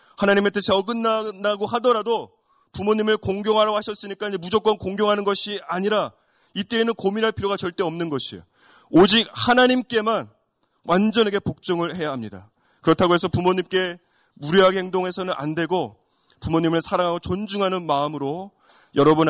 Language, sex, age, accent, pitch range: Korean, male, 30-49, native, 135-190 Hz